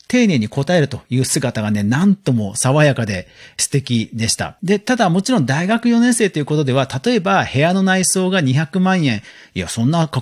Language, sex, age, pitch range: Japanese, male, 40-59, 120-195 Hz